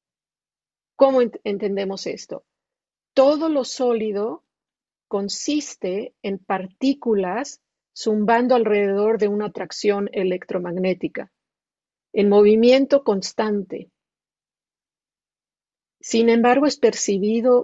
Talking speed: 75 wpm